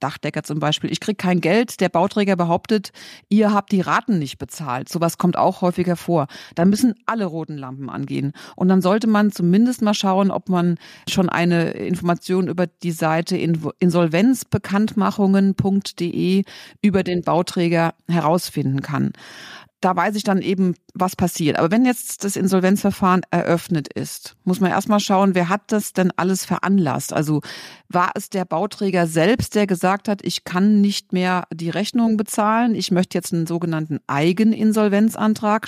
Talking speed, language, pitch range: 160 wpm, German, 170-210 Hz